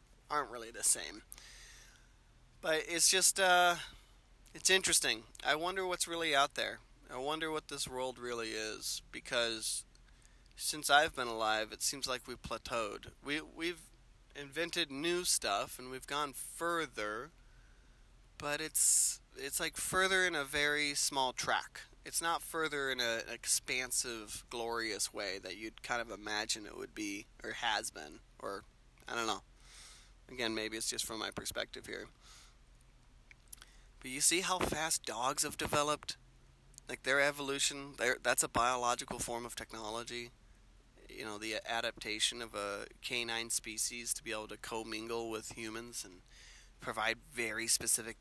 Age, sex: 20-39, male